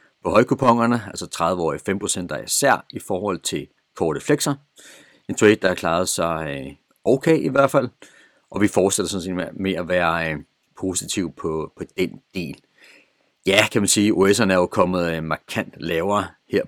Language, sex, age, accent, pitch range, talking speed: Danish, male, 40-59, native, 90-110 Hz, 175 wpm